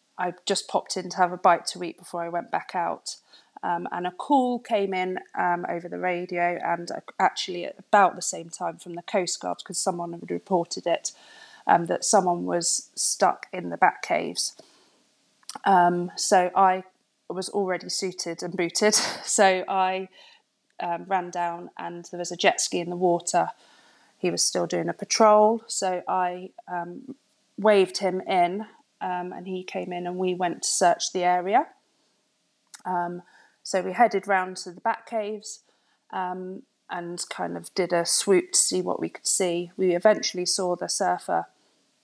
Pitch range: 175-195 Hz